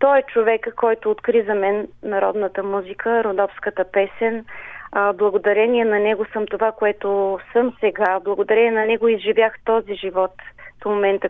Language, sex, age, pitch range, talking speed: Bulgarian, female, 30-49, 200-235 Hz, 145 wpm